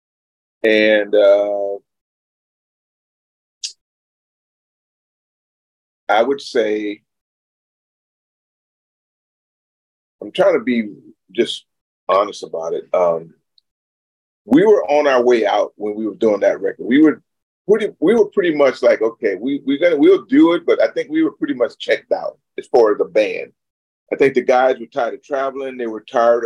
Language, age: English, 40-59